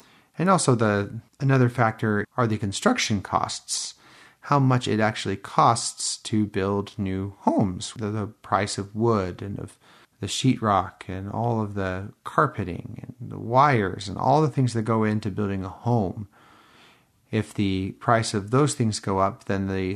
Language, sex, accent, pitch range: English, male, American, 100-120 Hz